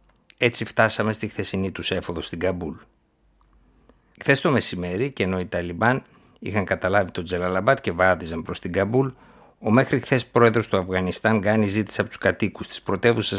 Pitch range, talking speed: 95-115 Hz, 165 wpm